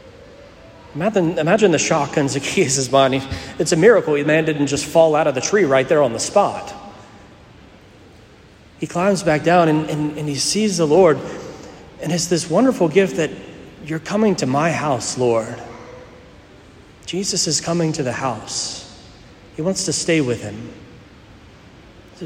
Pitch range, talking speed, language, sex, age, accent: 130-180 Hz, 160 wpm, English, male, 40-59, American